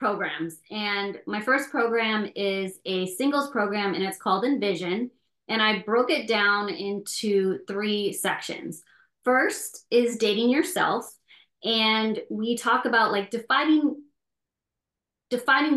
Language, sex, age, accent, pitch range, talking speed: English, female, 20-39, American, 185-230 Hz, 120 wpm